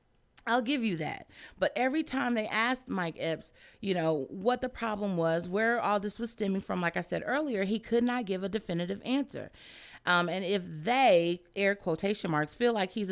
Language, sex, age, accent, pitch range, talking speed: English, female, 30-49, American, 180-245 Hz, 200 wpm